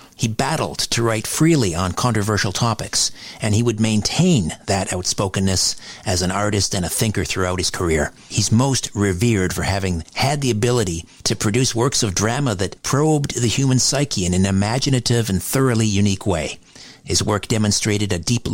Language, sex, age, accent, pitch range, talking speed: English, male, 50-69, American, 95-120 Hz, 170 wpm